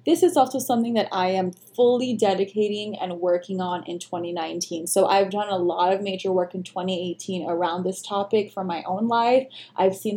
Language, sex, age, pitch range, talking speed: English, female, 20-39, 185-215 Hz, 195 wpm